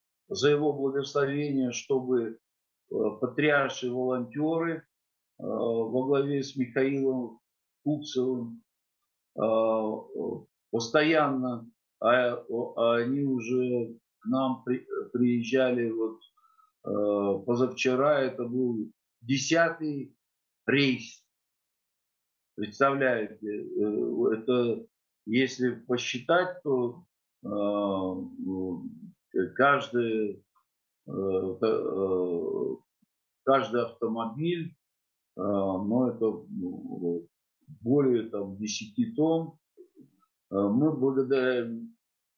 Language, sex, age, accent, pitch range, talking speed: Russian, male, 50-69, native, 115-145 Hz, 65 wpm